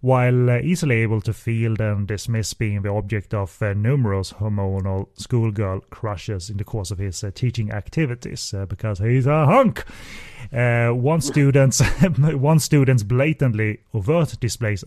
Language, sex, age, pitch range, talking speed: English, male, 30-49, 105-130 Hz, 150 wpm